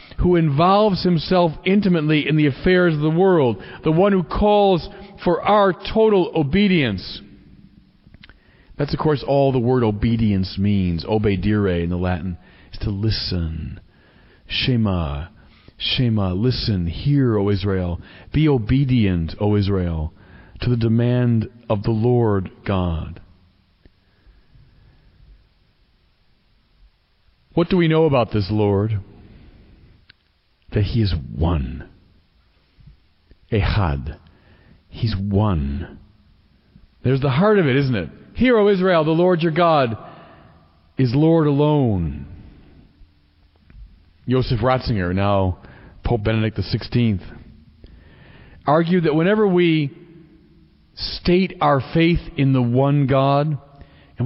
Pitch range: 95-155 Hz